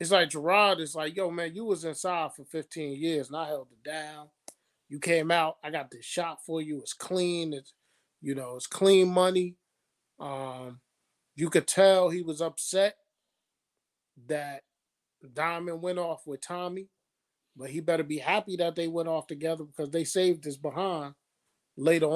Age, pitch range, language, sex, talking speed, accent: 30-49, 160-210 Hz, English, male, 175 wpm, American